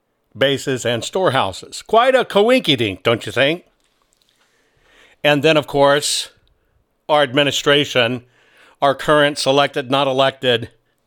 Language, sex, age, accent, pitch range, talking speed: English, male, 60-79, American, 130-160 Hz, 110 wpm